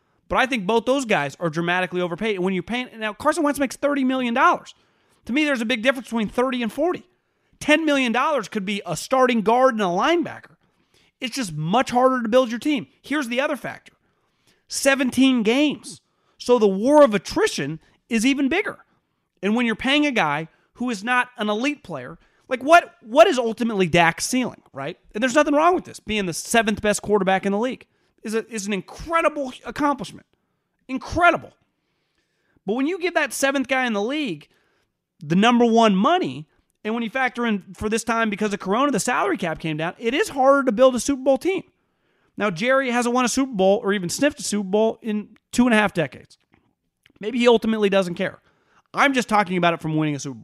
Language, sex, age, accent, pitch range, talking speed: English, male, 30-49, American, 200-265 Hz, 205 wpm